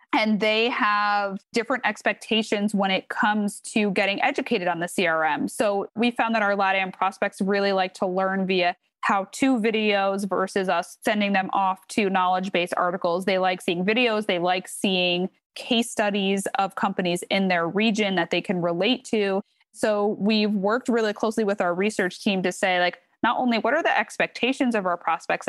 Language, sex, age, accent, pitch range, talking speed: English, female, 20-39, American, 185-215 Hz, 180 wpm